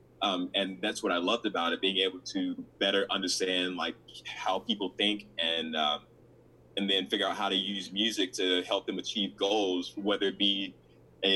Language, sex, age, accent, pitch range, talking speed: English, male, 20-39, American, 90-105 Hz, 190 wpm